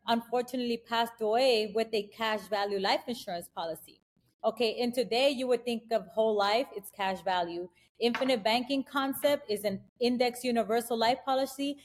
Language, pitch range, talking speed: English, 210-260 Hz, 155 wpm